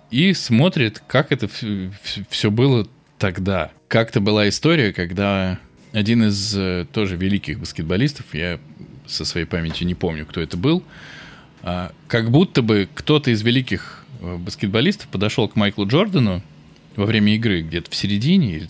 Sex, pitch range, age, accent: male, 95-130 Hz, 20-39, native